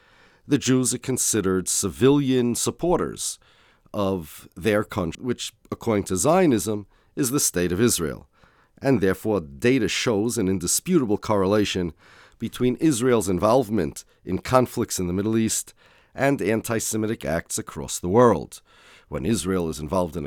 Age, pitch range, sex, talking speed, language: 40-59, 90-120 Hz, male, 135 wpm, English